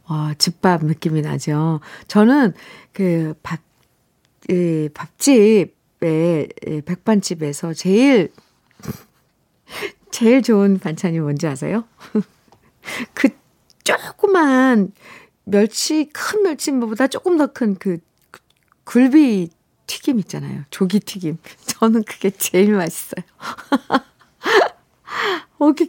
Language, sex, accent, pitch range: Korean, female, native, 185-270 Hz